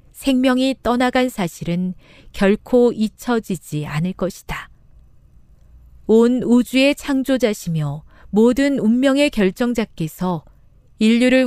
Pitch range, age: 165-240 Hz, 40-59